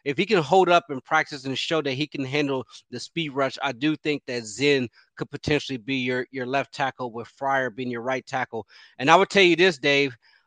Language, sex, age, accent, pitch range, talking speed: English, male, 30-49, American, 130-155 Hz, 235 wpm